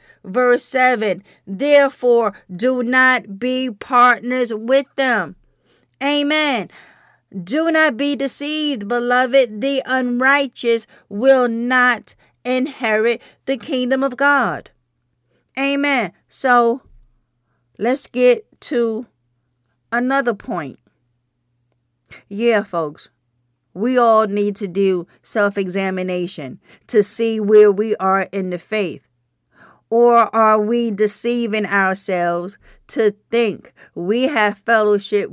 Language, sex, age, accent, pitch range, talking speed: English, female, 40-59, American, 185-245 Hz, 95 wpm